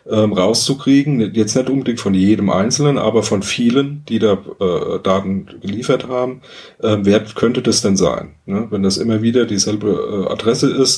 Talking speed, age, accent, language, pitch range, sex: 150 wpm, 40-59, German, German, 100-130 Hz, male